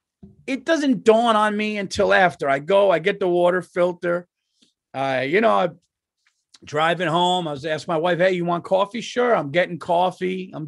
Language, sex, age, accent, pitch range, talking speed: English, male, 40-59, American, 140-185 Hz, 190 wpm